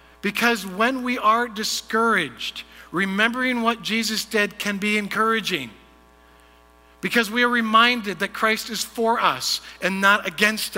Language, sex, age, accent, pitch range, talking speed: English, male, 50-69, American, 140-225 Hz, 135 wpm